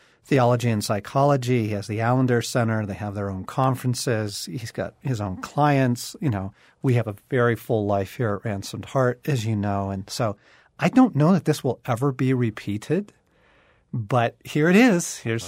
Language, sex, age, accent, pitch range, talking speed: English, male, 40-59, American, 110-150 Hz, 190 wpm